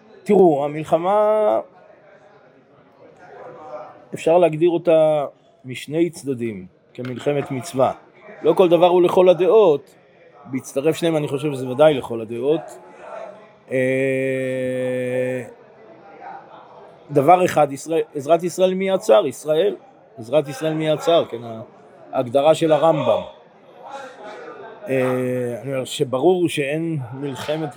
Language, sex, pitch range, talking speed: Hebrew, male, 135-175 Hz, 95 wpm